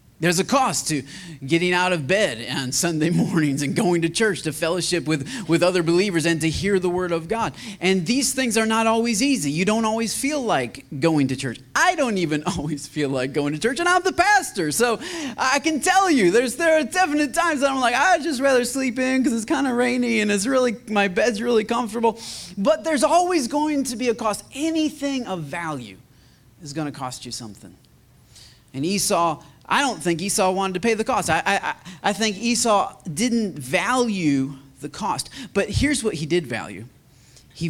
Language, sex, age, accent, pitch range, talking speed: English, male, 30-49, American, 150-240 Hz, 205 wpm